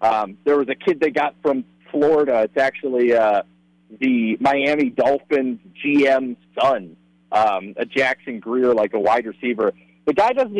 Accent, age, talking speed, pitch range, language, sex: American, 40-59, 160 wpm, 100-150 Hz, English, male